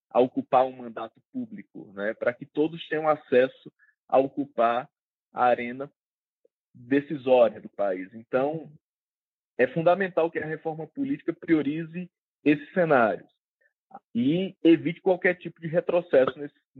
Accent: Brazilian